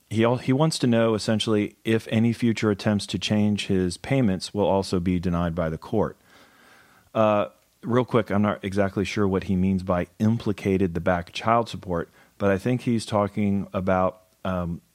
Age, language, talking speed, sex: 40-59, English, 175 wpm, male